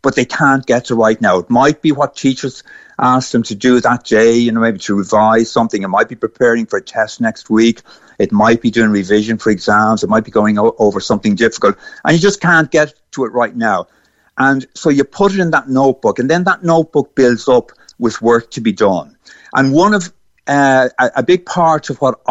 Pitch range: 115-155 Hz